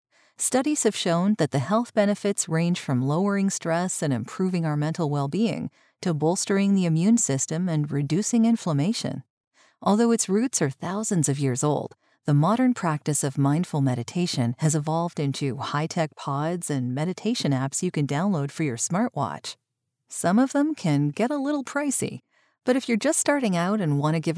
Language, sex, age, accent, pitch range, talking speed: English, female, 40-59, American, 150-220 Hz, 170 wpm